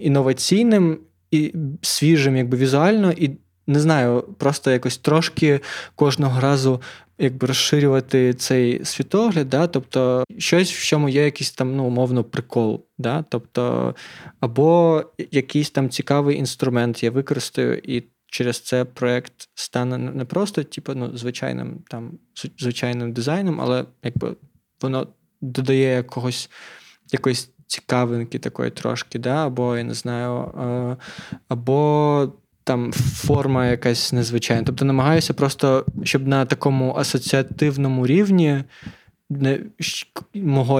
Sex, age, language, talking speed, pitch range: male, 20-39, Ukrainian, 115 wpm, 125-150 Hz